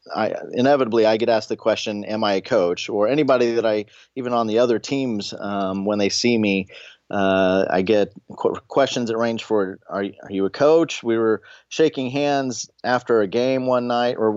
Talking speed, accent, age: 195 wpm, American, 30-49